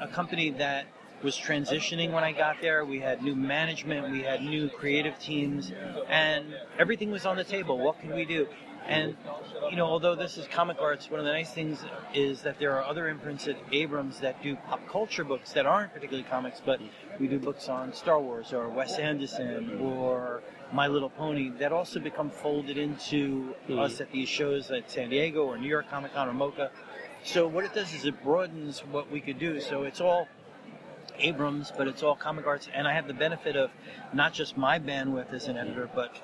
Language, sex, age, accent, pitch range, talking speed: English, male, 40-59, American, 135-155 Hz, 205 wpm